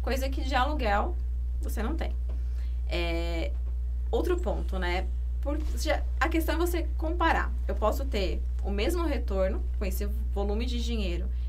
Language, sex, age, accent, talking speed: Portuguese, female, 20-39, Brazilian, 145 wpm